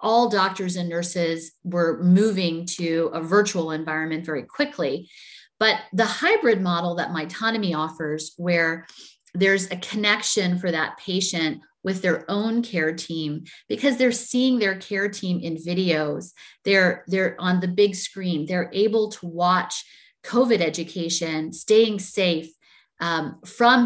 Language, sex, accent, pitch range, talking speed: English, female, American, 170-210 Hz, 140 wpm